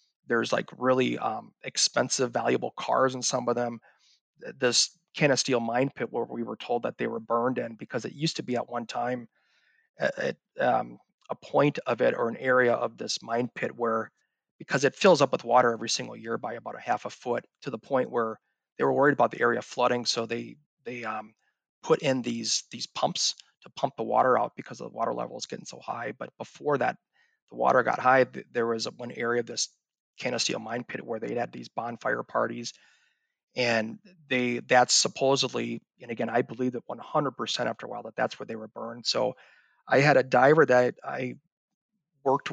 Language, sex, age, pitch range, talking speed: English, male, 30-49, 115-130 Hz, 205 wpm